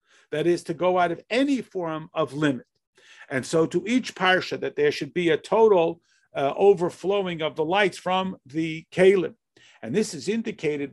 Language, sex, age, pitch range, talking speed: English, male, 50-69, 150-195 Hz, 180 wpm